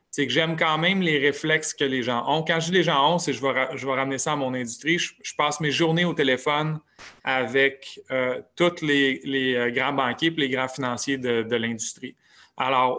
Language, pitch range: French, 135-165 Hz